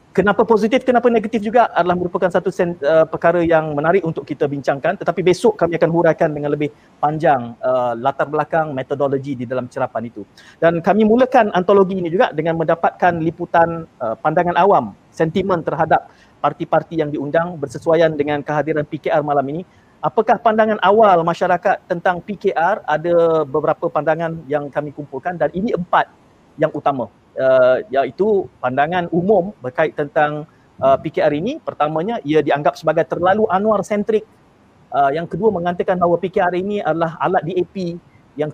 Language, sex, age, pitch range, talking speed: Malay, male, 40-59, 150-185 Hz, 155 wpm